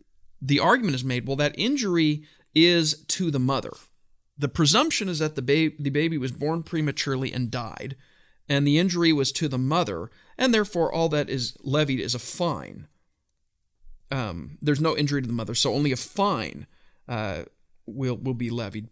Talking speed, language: 180 wpm, English